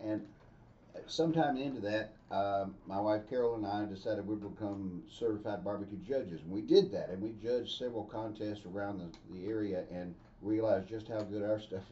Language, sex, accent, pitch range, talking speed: English, male, American, 105-130 Hz, 180 wpm